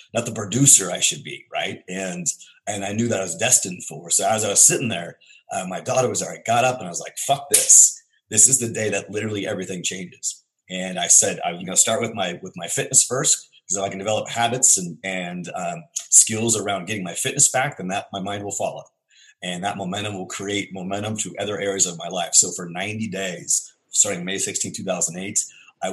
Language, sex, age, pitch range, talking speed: English, male, 30-49, 95-120 Hz, 230 wpm